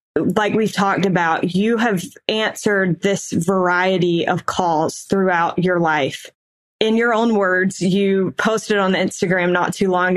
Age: 20-39